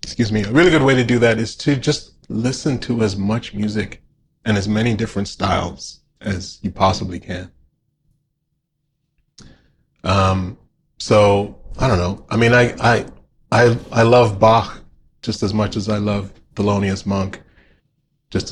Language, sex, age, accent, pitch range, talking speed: English, male, 30-49, American, 95-115 Hz, 155 wpm